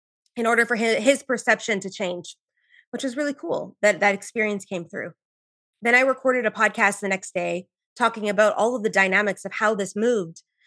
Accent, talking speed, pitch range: American, 190 wpm, 215-270 Hz